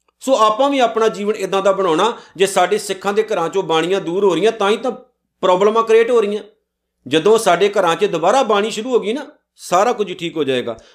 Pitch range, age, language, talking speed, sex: 160-220 Hz, 50-69, Punjabi, 220 wpm, male